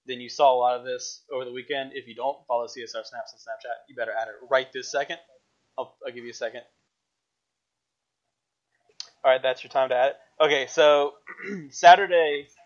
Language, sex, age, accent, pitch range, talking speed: English, male, 20-39, American, 125-180 Hz, 195 wpm